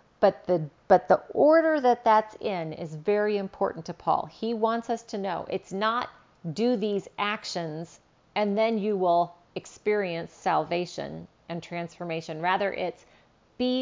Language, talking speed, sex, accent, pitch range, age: English, 150 wpm, female, American, 175-220 Hz, 40-59